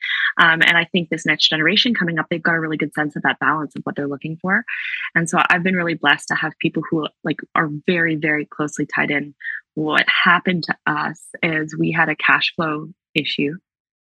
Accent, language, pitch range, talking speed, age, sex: American, English, 150-175 Hz, 215 wpm, 20-39, female